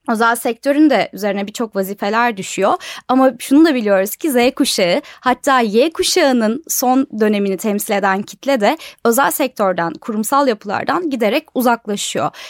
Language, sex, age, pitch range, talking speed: Turkish, female, 10-29, 220-285 Hz, 140 wpm